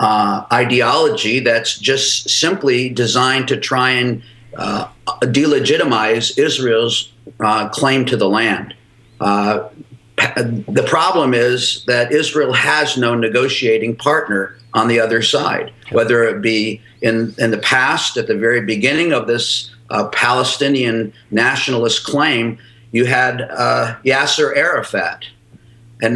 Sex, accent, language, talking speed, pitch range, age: male, American, English, 125 wpm, 115-145 Hz, 50-69